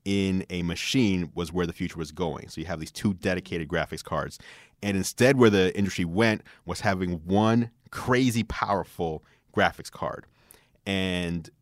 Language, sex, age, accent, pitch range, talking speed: English, male, 30-49, American, 90-110 Hz, 160 wpm